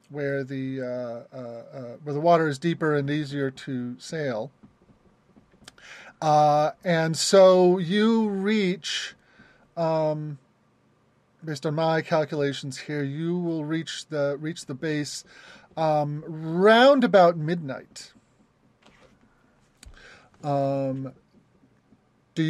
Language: English